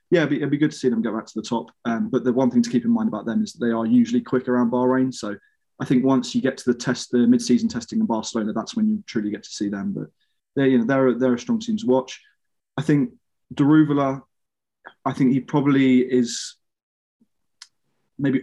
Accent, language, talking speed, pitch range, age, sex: British, English, 245 wpm, 120-150 Hz, 20-39, male